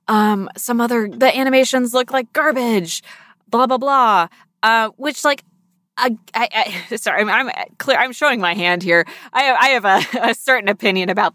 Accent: American